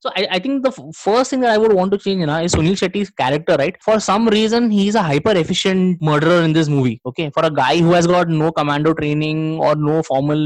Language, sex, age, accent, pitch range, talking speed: Hindi, male, 10-29, native, 150-205 Hz, 275 wpm